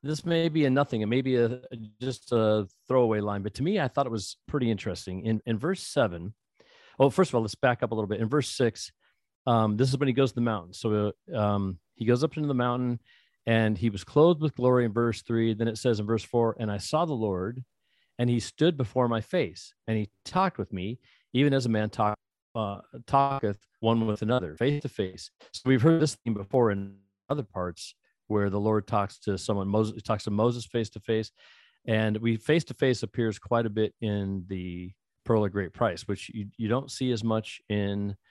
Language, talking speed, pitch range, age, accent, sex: English, 225 wpm, 100-125 Hz, 40-59, American, male